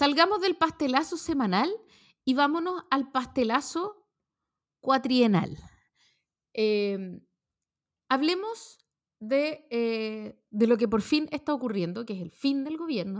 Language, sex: Spanish, female